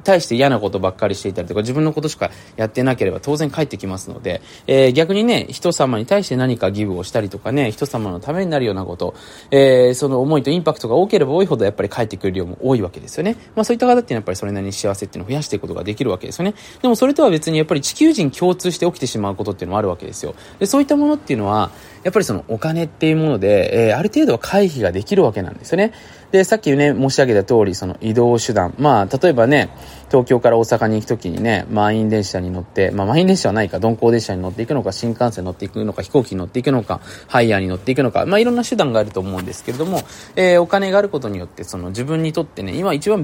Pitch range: 100-155 Hz